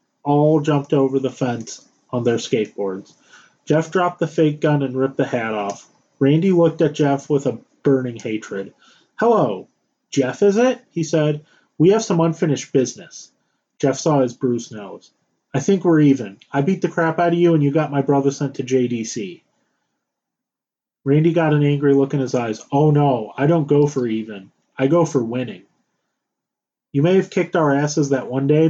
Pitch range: 135-160 Hz